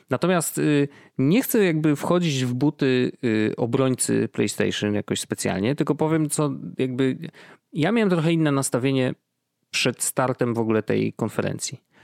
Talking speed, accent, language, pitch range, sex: 130 wpm, native, Polish, 125-165 Hz, male